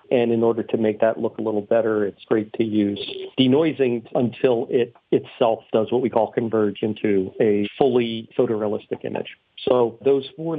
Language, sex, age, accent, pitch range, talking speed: English, male, 50-69, American, 110-130 Hz, 175 wpm